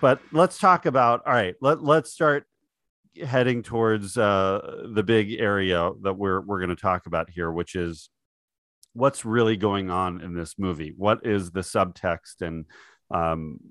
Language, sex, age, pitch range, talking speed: English, male, 40-59, 95-120 Hz, 165 wpm